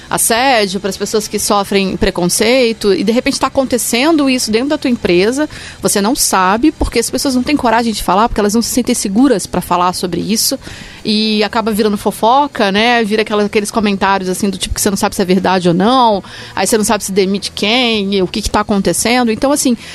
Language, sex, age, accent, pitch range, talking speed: Portuguese, female, 30-49, Brazilian, 195-245 Hz, 215 wpm